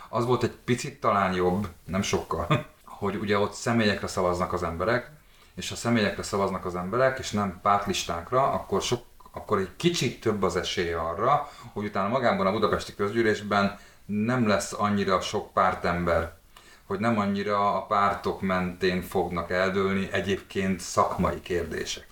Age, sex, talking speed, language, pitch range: 30-49, male, 150 wpm, Hungarian, 90-115 Hz